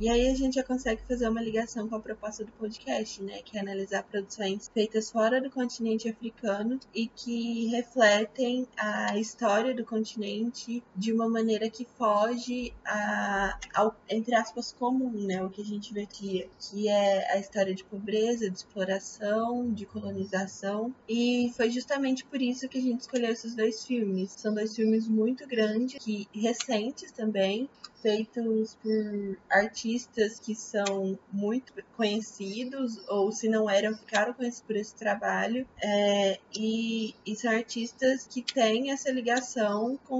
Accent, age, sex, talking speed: Brazilian, 20-39, female, 150 wpm